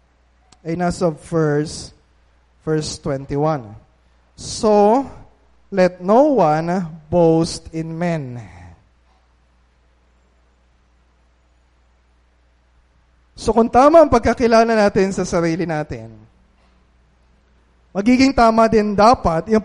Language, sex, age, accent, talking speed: Filipino, male, 20-39, native, 80 wpm